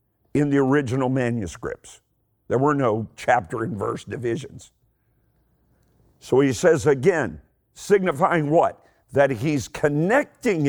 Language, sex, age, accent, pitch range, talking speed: English, male, 50-69, American, 125-180 Hz, 110 wpm